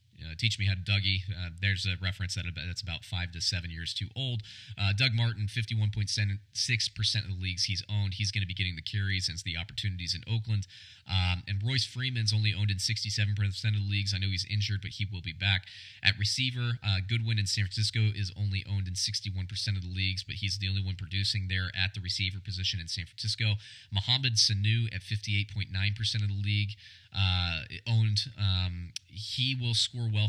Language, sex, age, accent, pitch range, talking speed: English, male, 30-49, American, 100-110 Hz, 210 wpm